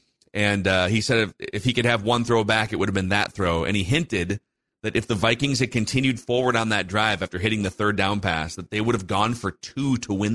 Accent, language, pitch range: American, English, 100-125 Hz